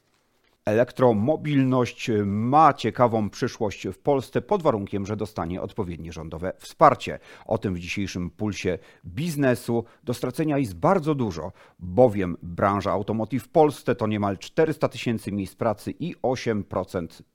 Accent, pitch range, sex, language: native, 95-125 Hz, male, Polish